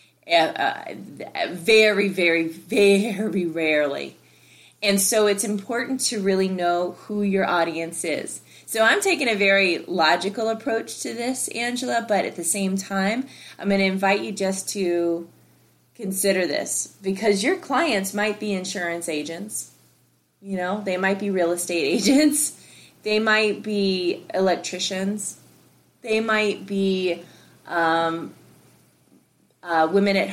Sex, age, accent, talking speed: female, 20-39, American, 135 wpm